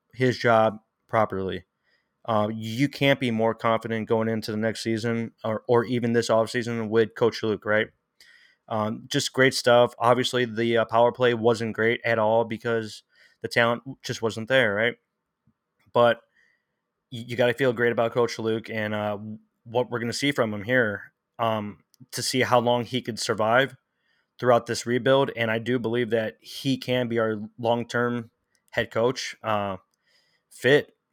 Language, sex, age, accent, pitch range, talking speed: English, male, 20-39, American, 110-125 Hz, 170 wpm